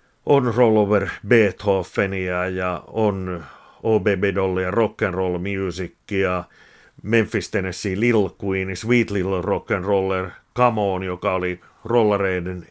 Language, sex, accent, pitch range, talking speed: Finnish, male, native, 95-110 Hz, 105 wpm